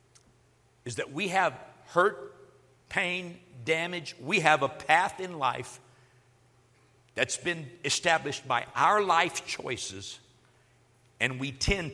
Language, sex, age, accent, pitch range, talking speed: English, male, 60-79, American, 125-200 Hz, 115 wpm